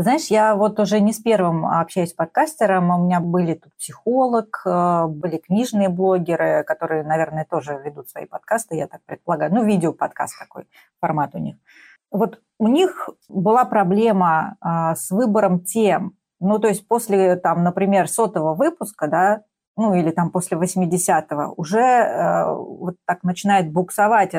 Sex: female